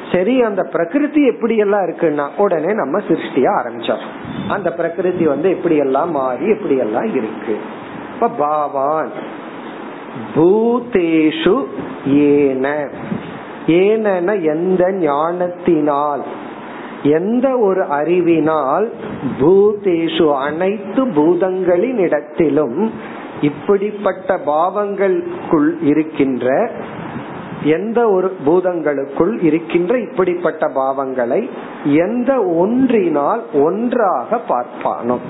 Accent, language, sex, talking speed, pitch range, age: native, Tamil, male, 50 wpm, 150-205 Hz, 50-69